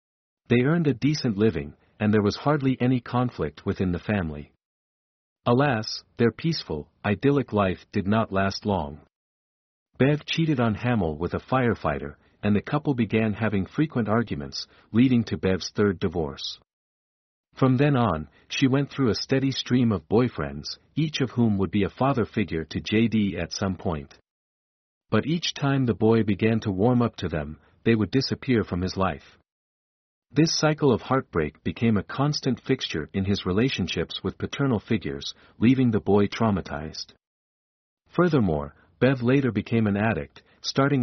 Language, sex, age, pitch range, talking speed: English, male, 50-69, 90-125 Hz, 160 wpm